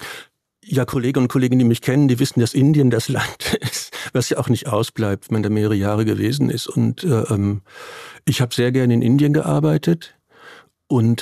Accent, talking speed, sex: German, 185 wpm, male